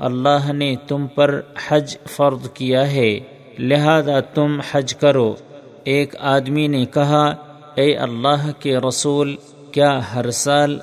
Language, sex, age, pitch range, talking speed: Urdu, male, 50-69, 130-145 Hz, 125 wpm